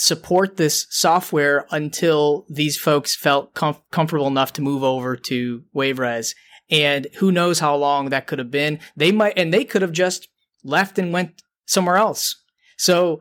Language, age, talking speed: English, 20-39, 170 wpm